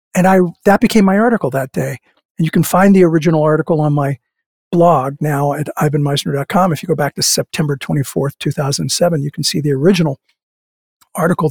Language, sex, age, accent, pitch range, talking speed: English, male, 50-69, American, 145-180 Hz, 180 wpm